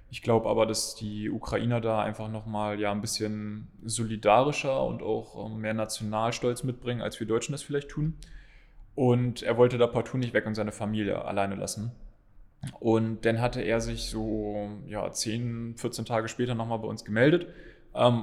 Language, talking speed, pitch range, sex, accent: German, 180 wpm, 105-120 Hz, male, German